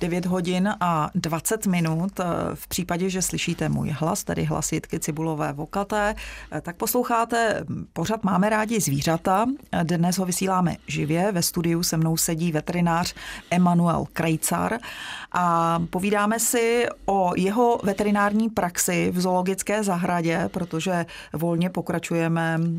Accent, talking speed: native, 120 wpm